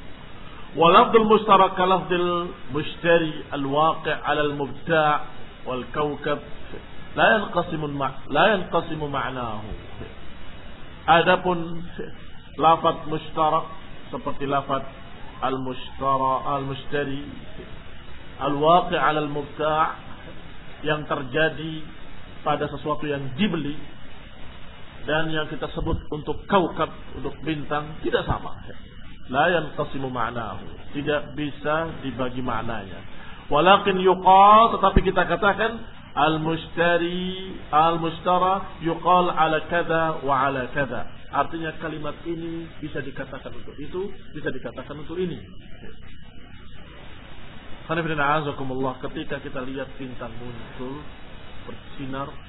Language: Indonesian